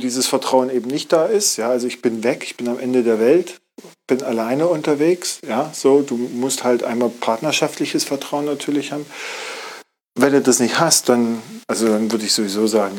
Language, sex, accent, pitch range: German, male, German, 110-130 Hz